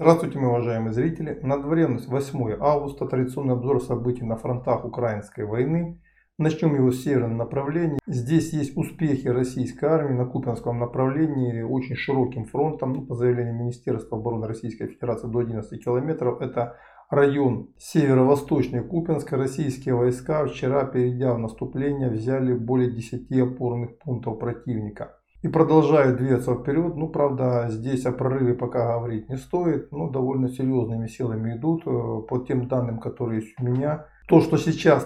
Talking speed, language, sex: 140 wpm, Russian, male